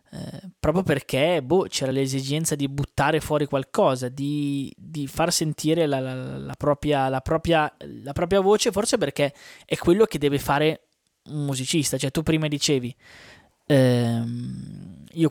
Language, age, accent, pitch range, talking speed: Italian, 20-39, native, 130-155 Hz, 130 wpm